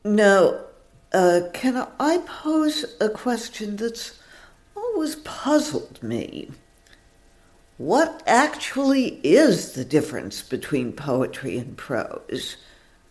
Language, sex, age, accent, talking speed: English, female, 60-79, American, 90 wpm